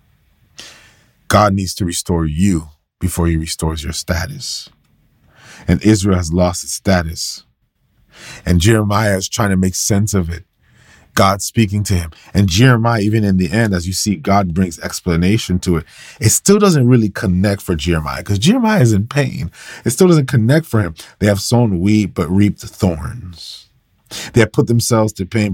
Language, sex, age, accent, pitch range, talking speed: English, male, 40-59, American, 90-115 Hz, 175 wpm